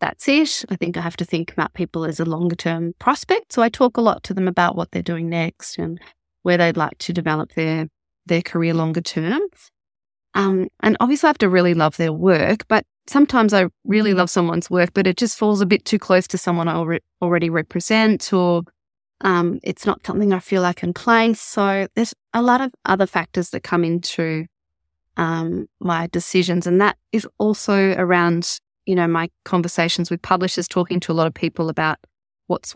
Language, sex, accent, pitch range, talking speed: English, female, Australian, 165-195 Hz, 200 wpm